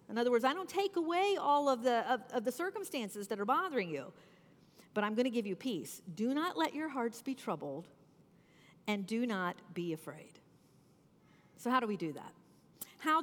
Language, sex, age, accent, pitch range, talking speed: English, female, 50-69, American, 195-285 Hz, 190 wpm